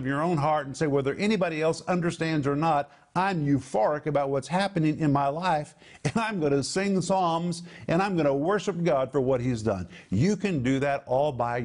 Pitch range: 130-175 Hz